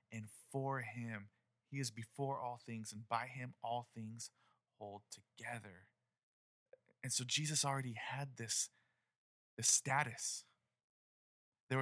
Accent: American